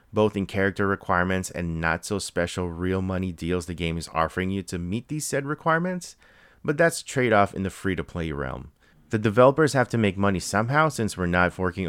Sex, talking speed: male, 185 wpm